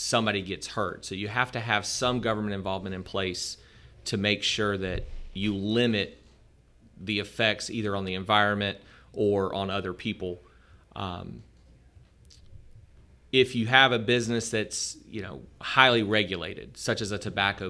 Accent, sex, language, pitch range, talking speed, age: American, male, English, 95-110 Hz, 150 wpm, 30-49